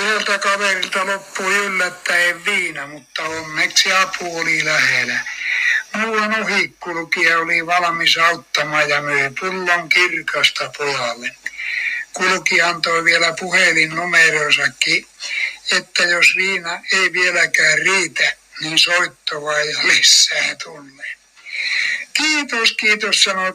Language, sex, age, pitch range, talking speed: Finnish, male, 60-79, 170-205 Hz, 95 wpm